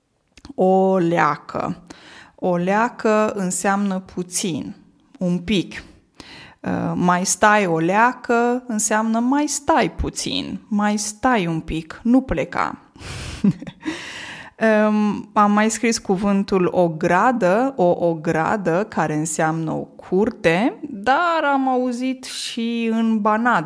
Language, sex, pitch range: Romanian, female, 175-220 Hz